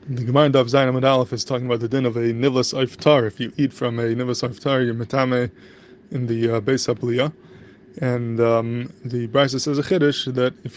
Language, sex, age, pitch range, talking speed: English, male, 20-39, 125-140 Hz, 195 wpm